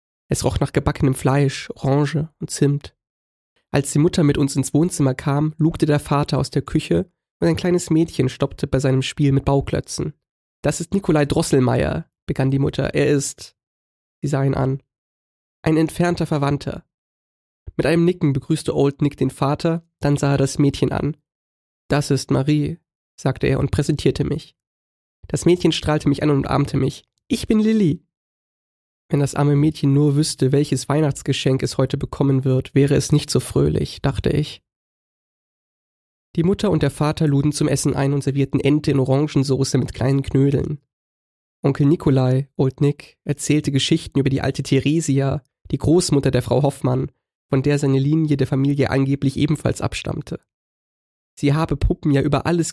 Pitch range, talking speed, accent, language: 135-150 Hz, 165 wpm, German, German